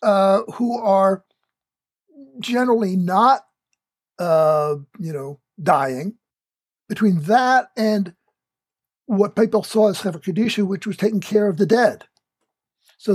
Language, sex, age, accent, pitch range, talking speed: English, male, 60-79, American, 165-205 Hz, 115 wpm